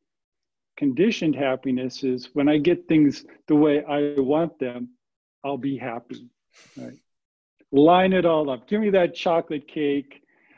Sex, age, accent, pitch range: male, 50-69, American, 130-165 Hz